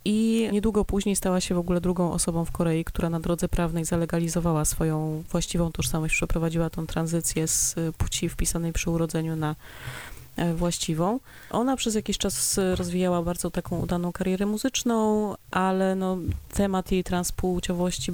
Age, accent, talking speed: 30-49, native, 140 wpm